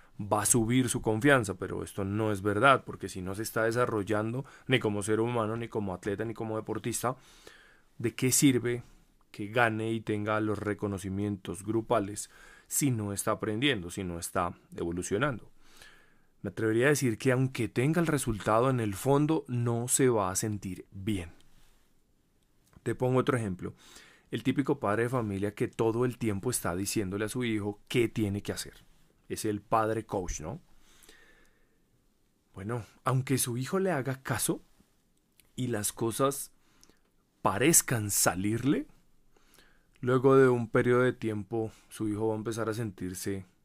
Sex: male